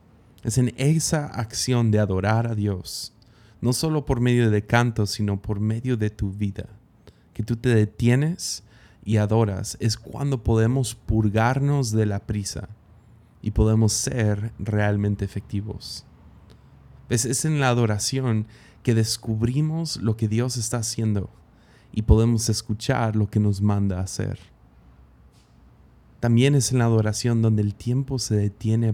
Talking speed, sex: 140 wpm, male